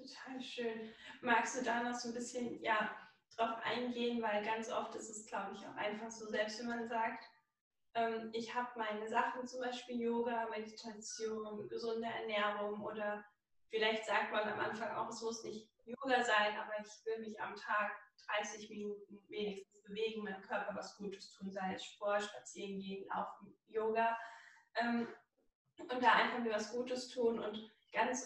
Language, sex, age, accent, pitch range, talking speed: German, female, 10-29, German, 210-235 Hz, 170 wpm